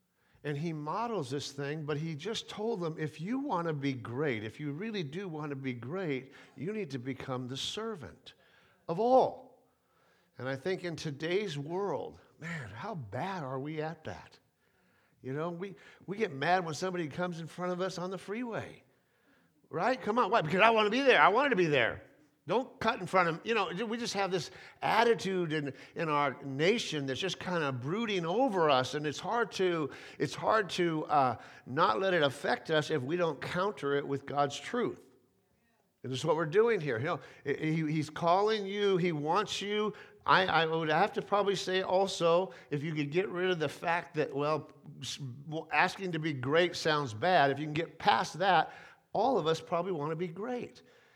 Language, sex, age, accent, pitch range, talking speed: English, male, 50-69, American, 145-190 Hz, 205 wpm